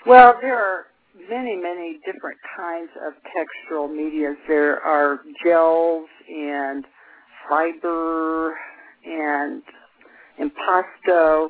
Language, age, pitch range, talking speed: English, 50-69, 150-175 Hz, 90 wpm